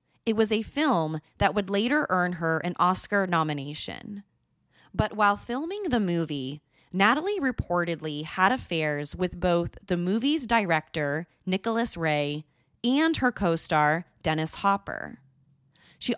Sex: female